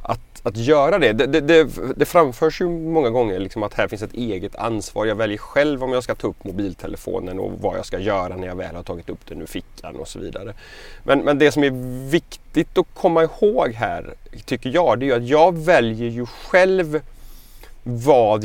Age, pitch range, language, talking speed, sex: 30-49, 100-150 Hz, Swedish, 210 wpm, male